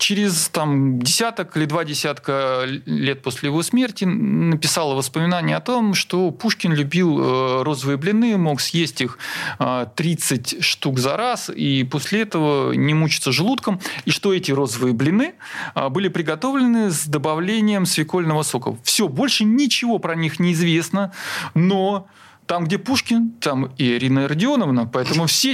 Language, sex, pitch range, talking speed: Russian, male, 145-195 Hz, 140 wpm